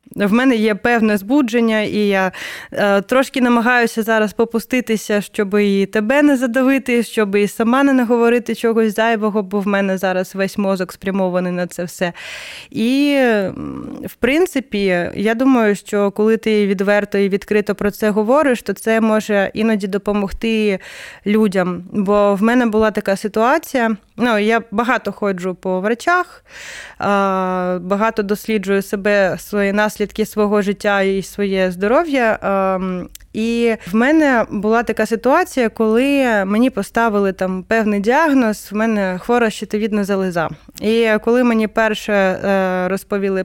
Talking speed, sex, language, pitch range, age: 135 wpm, female, Ukrainian, 200-235 Hz, 20-39